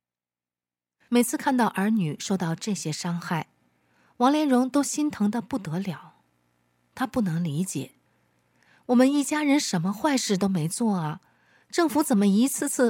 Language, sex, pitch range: Chinese, female, 150-240 Hz